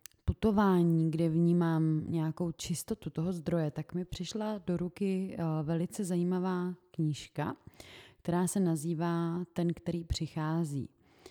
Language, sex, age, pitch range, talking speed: Czech, female, 30-49, 150-170 Hz, 110 wpm